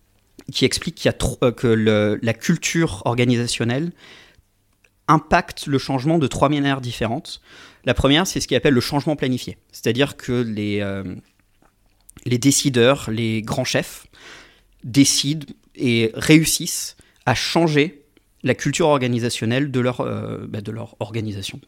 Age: 30-49